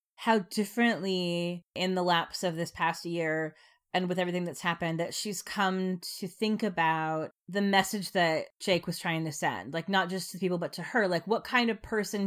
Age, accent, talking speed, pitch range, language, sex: 30-49, American, 205 wpm, 170-210 Hz, English, female